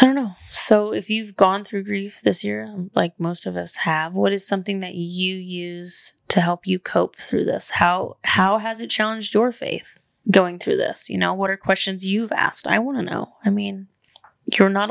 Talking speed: 215 wpm